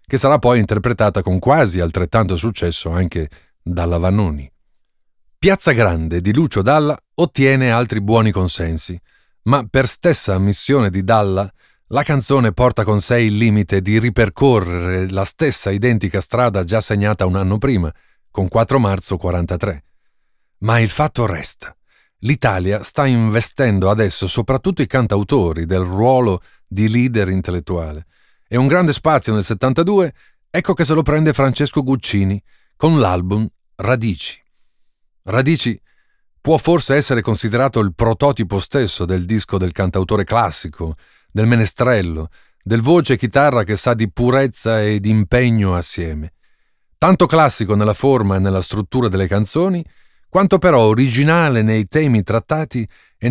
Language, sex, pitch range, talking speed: Italian, male, 95-135 Hz, 135 wpm